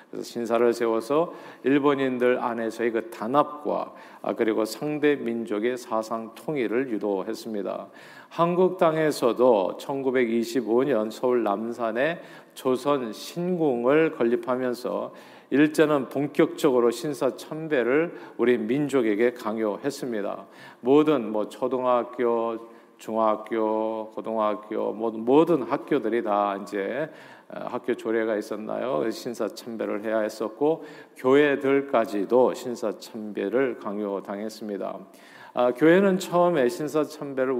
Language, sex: Korean, male